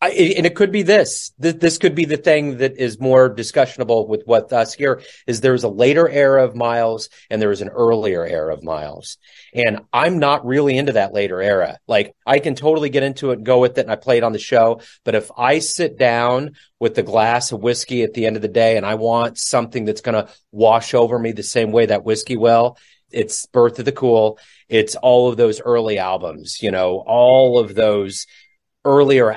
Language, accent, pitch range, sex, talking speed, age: English, American, 115-145 Hz, male, 220 wpm, 30-49